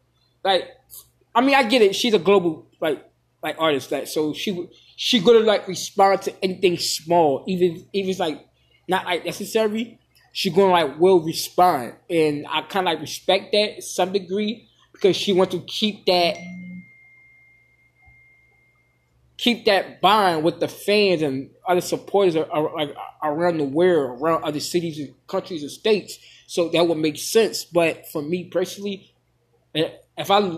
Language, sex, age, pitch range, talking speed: English, male, 20-39, 155-215 Hz, 160 wpm